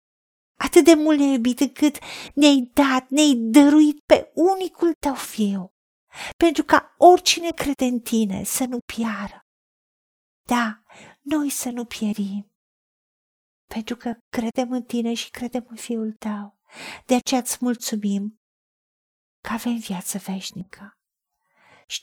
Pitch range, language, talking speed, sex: 215-275 Hz, Romanian, 130 wpm, female